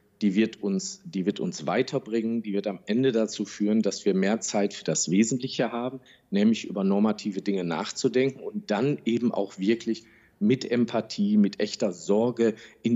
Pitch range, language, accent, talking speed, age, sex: 100-135 Hz, English, German, 170 wpm, 40-59, male